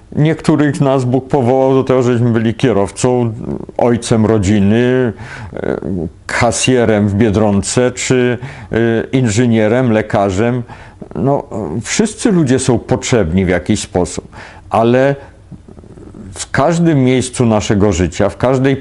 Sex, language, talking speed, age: male, Polish, 105 wpm, 50-69